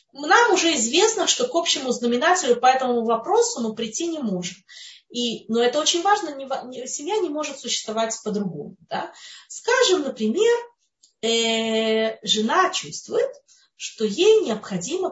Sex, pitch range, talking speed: female, 200-325 Hz, 125 wpm